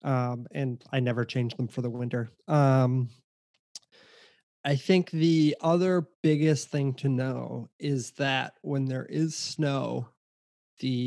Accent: American